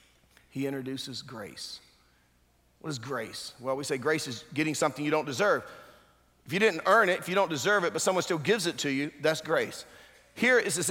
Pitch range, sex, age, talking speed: 130-180 Hz, male, 50-69, 210 wpm